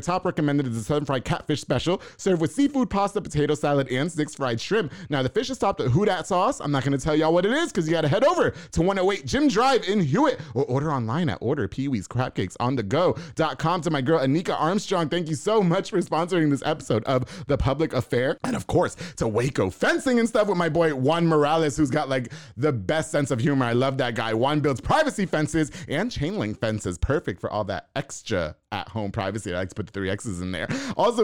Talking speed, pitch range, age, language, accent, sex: 225 wpm, 135-185 Hz, 30-49, English, American, male